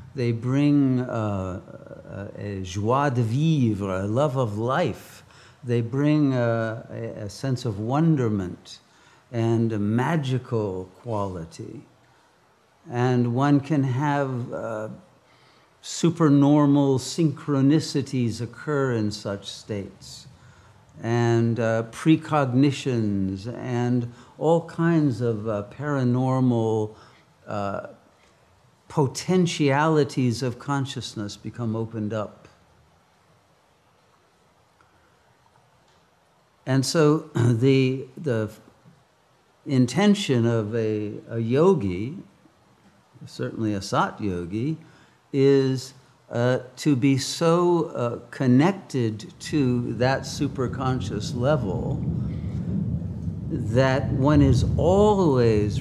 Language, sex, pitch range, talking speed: English, male, 115-145 Hz, 85 wpm